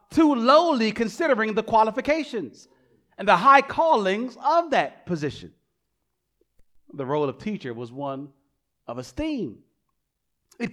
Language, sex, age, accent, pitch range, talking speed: English, male, 40-59, American, 175-280 Hz, 115 wpm